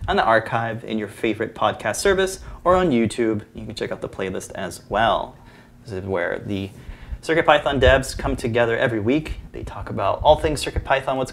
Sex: male